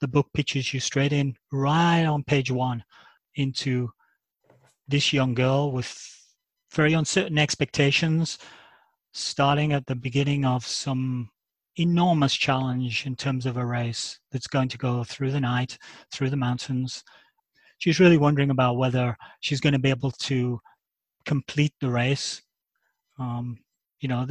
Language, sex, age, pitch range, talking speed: English, male, 30-49, 130-145 Hz, 145 wpm